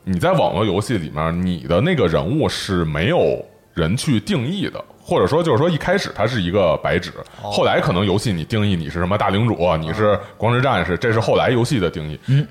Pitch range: 85-125 Hz